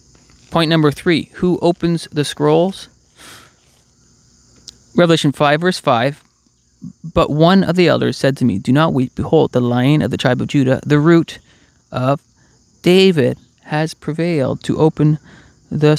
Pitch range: 130-175 Hz